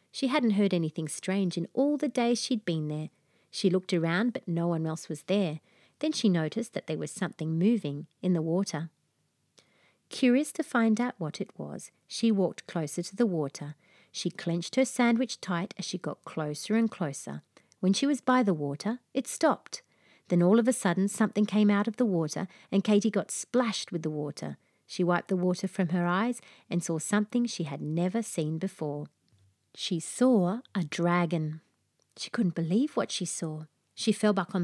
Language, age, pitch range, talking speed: English, 40-59, 165-220 Hz, 190 wpm